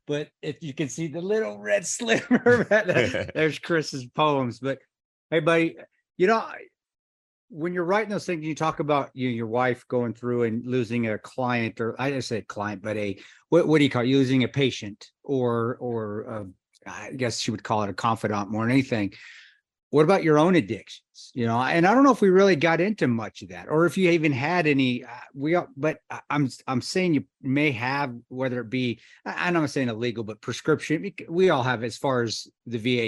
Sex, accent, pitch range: male, American, 115-155 Hz